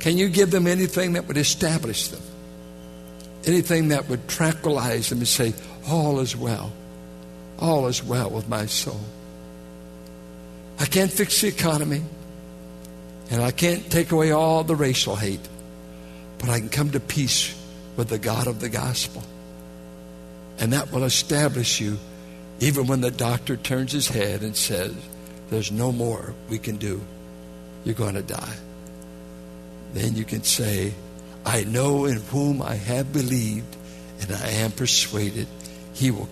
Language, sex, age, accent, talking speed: English, male, 60-79, American, 150 wpm